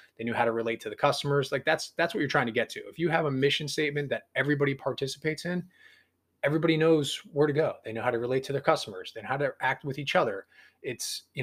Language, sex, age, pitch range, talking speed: English, male, 20-39, 120-165 Hz, 255 wpm